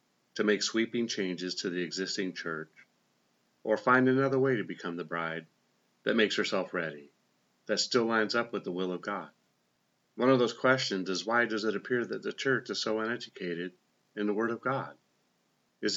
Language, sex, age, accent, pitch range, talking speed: English, male, 40-59, American, 95-115 Hz, 190 wpm